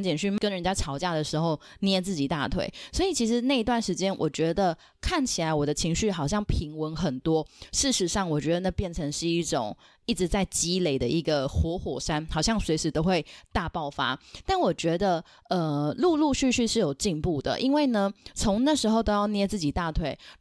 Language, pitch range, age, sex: Chinese, 160-215 Hz, 20-39, female